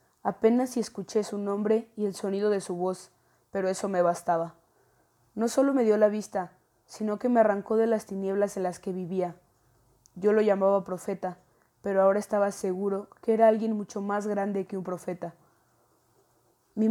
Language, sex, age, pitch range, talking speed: Spanish, female, 20-39, 185-215 Hz, 175 wpm